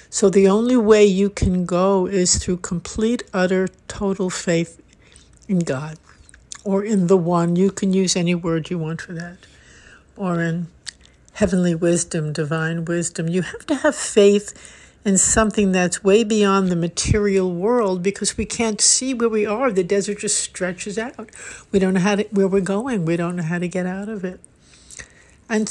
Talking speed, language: 175 wpm, English